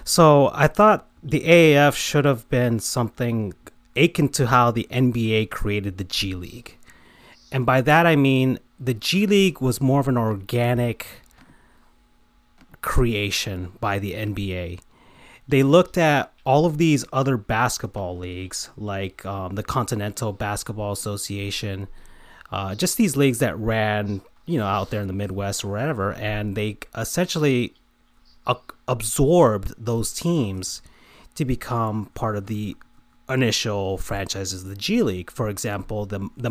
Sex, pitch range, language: male, 100-135 Hz, English